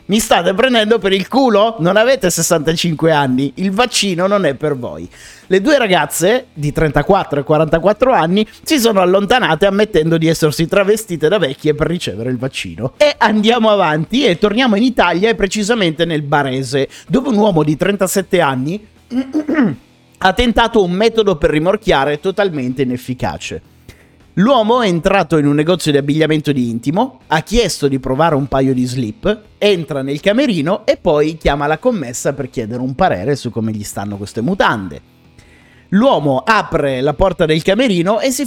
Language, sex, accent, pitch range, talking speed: Italian, male, native, 145-210 Hz, 165 wpm